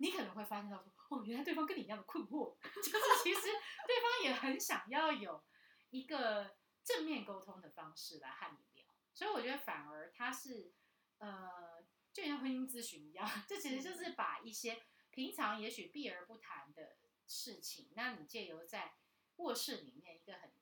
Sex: female